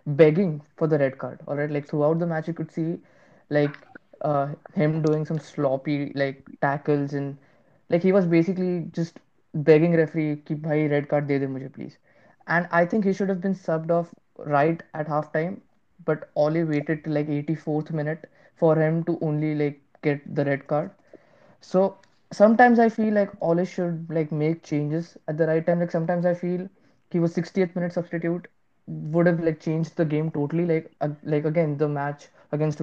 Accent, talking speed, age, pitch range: Indian, 190 wpm, 20-39, 150-175 Hz